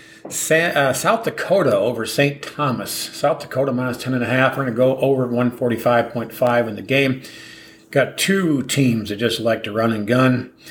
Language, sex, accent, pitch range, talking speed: English, male, American, 120-145 Hz, 155 wpm